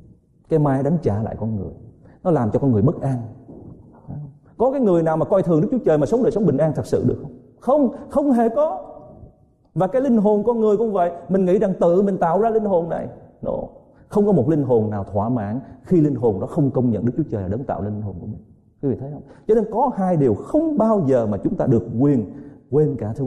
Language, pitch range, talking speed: Vietnamese, 100-155 Hz, 250 wpm